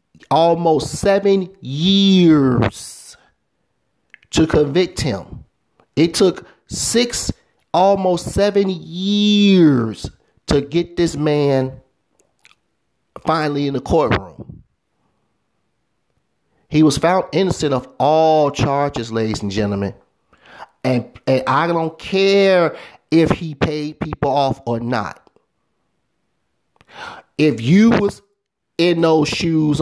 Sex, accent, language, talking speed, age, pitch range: male, American, English, 95 wpm, 40-59, 140-190 Hz